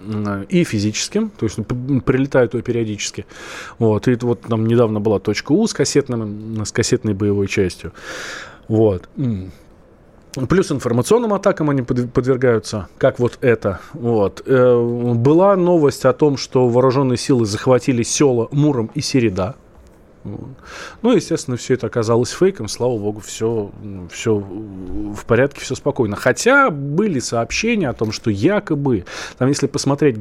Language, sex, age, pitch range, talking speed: Russian, male, 20-39, 110-140 Hz, 130 wpm